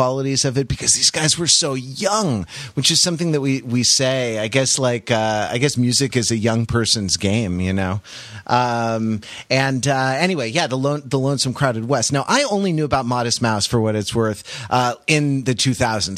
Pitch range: 115-145 Hz